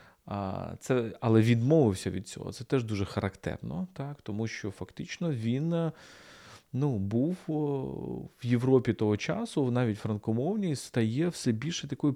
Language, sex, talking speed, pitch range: Ukrainian, male, 135 wpm, 100-135 Hz